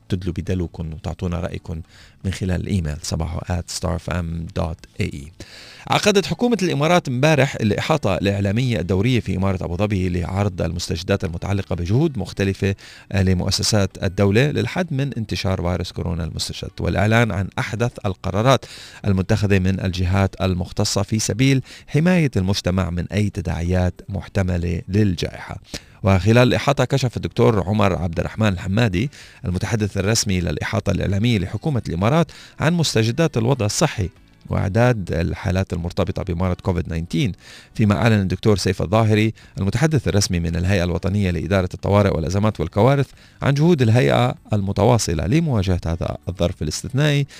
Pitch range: 90-115 Hz